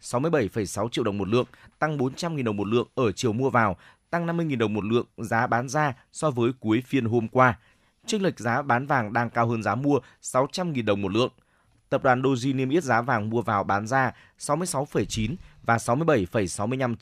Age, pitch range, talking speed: 20-39, 110-130 Hz, 200 wpm